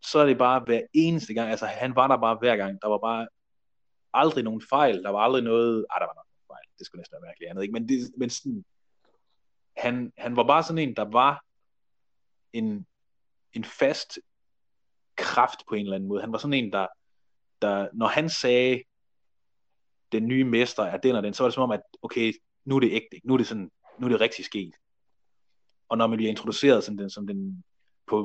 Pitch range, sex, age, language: 105-130 Hz, male, 30-49, Danish